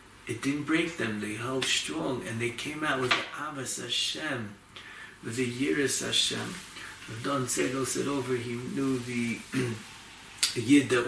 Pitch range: 120-150 Hz